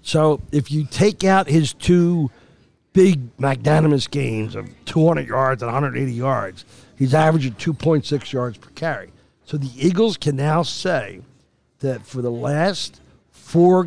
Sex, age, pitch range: male, 50-69, 130-165 Hz